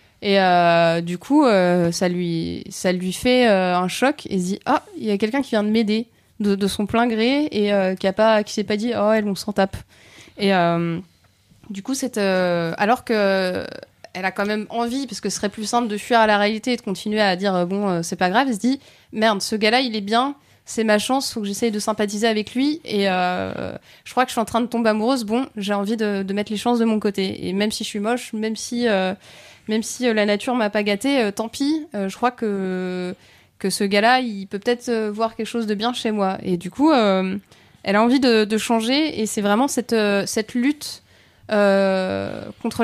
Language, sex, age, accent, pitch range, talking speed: French, female, 20-39, French, 195-235 Hz, 250 wpm